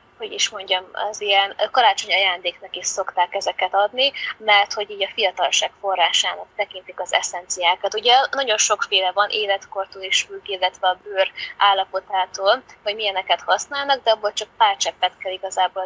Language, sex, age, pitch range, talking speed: Hungarian, female, 20-39, 190-215 Hz, 150 wpm